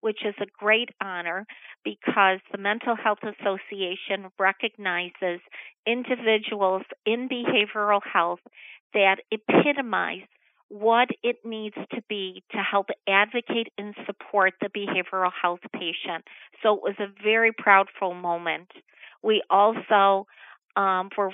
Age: 40-59